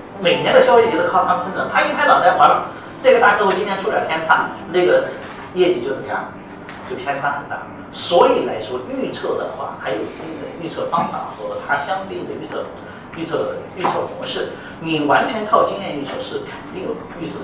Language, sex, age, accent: Chinese, male, 40-59, native